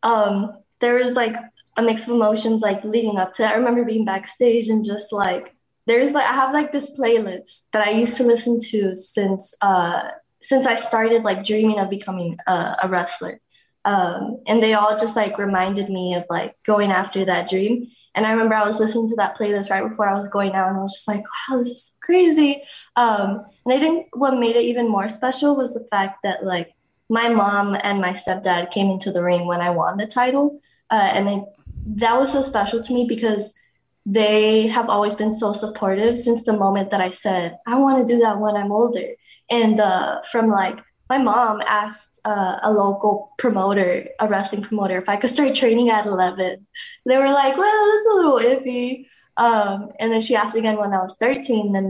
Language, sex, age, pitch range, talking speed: English, female, 20-39, 195-240 Hz, 210 wpm